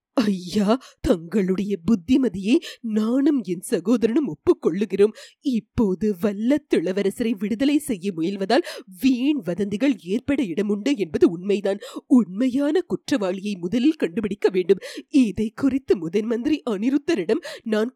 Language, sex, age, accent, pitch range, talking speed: Tamil, female, 30-49, native, 205-290 Hz, 60 wpm